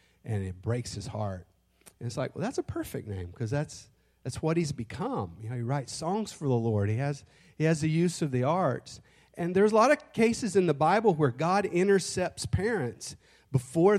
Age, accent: 40-59, American